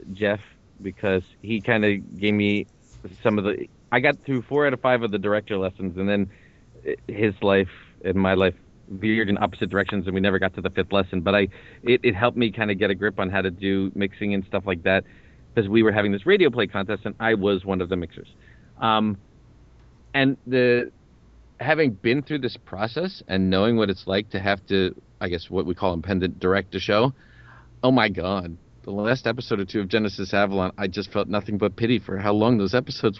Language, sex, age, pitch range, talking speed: English, male, 40-59, 95-110 Hz, 220 wpm